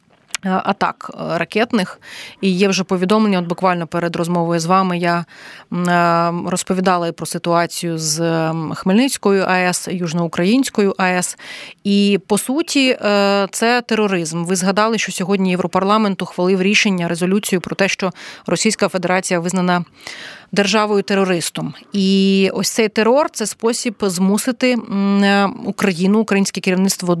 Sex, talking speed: female, 115 wpm